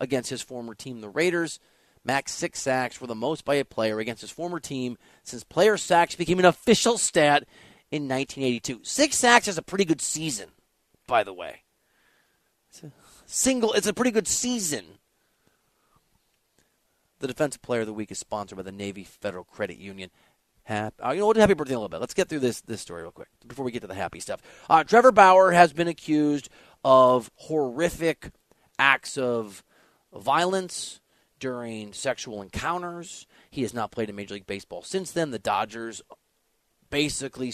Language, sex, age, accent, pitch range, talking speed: English, male, 30-49, American, 115-160 Hz, 175 wpm